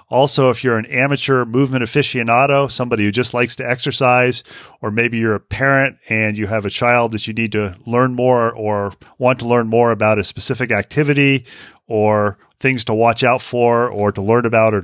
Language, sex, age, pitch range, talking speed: English, male, 40-59, 110-130 Hz, 200 wpm